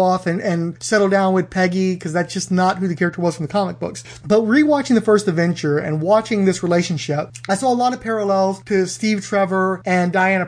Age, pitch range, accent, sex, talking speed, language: 30-49, 175-215 Hz, American, male, 225 wpm, English